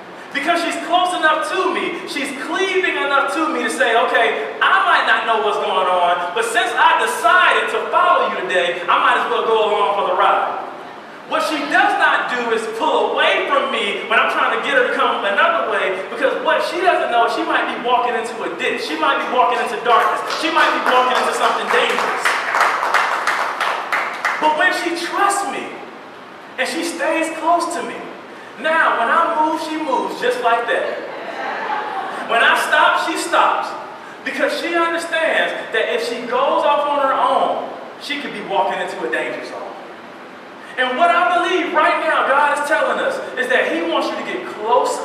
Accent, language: American, English